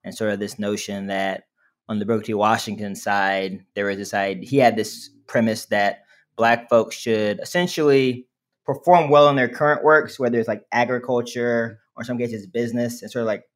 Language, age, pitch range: English, 20-39, 110-125 Hz